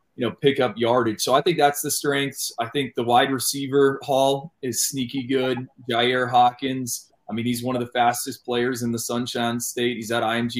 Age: 20-39